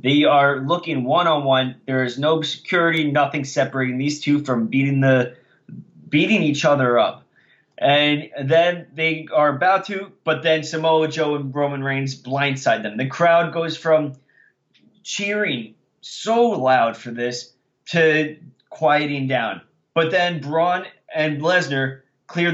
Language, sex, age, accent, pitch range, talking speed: English, male, 20-39, American, 130-160 Hz, 140 wpm